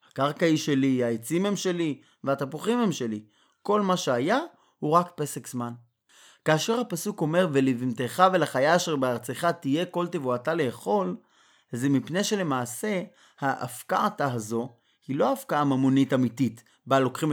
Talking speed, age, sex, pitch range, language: 130 wpm, 20-39, male, 120-160 Hz, Hebrew